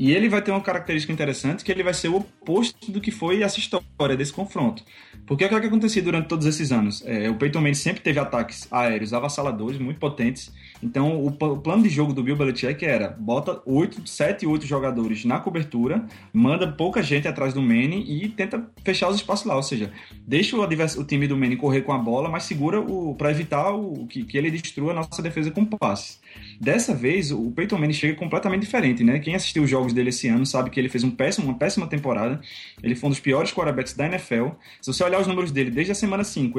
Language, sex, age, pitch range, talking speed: Portuguese, male, 20-39, 130-180 Hz, 225 wpm